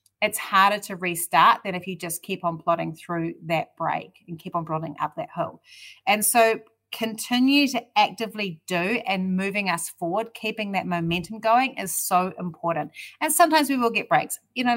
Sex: female